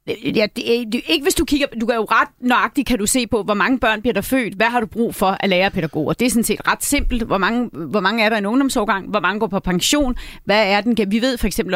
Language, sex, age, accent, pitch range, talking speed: Danish, female, 40-59, native, 180-245 Hz, 270 wpm